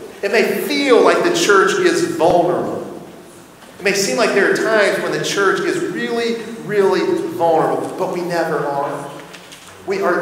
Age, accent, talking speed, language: 40-59, American, 165 wpm, English